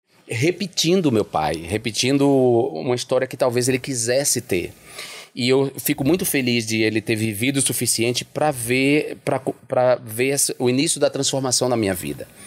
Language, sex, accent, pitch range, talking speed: Portuguese, male, Brazilian, 100-130 Hz, 155 wpm